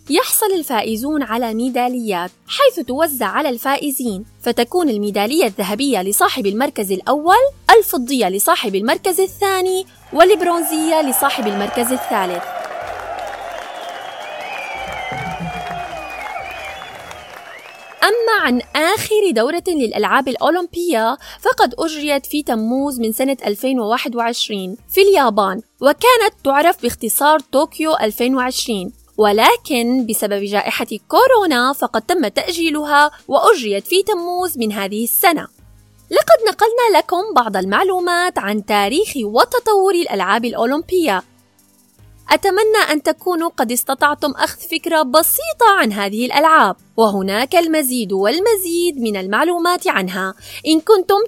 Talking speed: 100 wpm